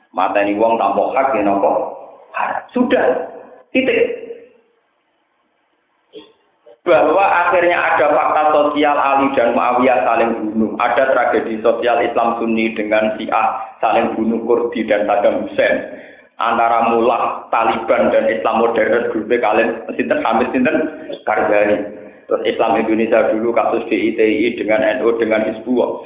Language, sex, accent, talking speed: Indonesian, male, native, 120 wpm